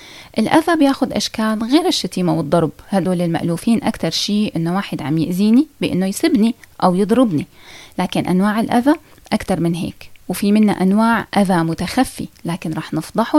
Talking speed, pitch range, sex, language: 145 wpm, 175-250 Hz, female, Arabic